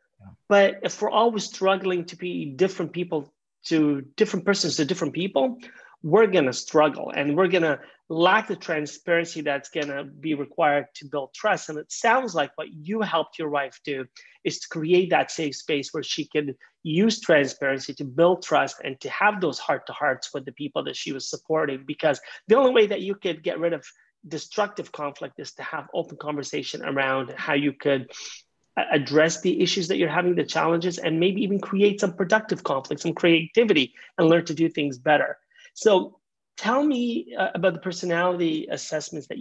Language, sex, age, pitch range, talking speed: English, male, 30-49, 150-185 Hz, 190 wpm